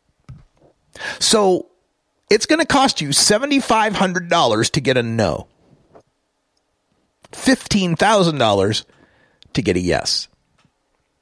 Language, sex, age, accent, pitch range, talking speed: English, male, 40-59, American, 130-220 Hz, 85 wpm